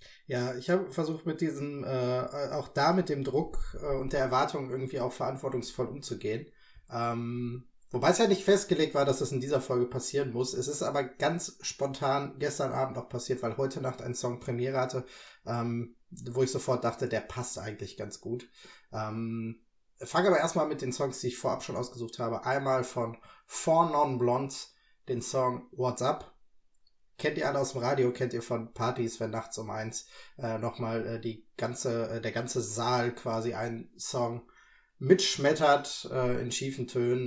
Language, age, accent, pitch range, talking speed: German, 20-39, German, 120-135 Hz, 180 wpm